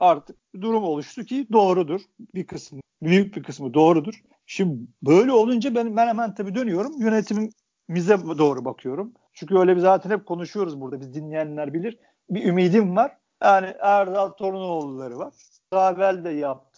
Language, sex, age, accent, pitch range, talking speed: Turkish, male, 50-69, native, 155-210 Hz, 145 wpm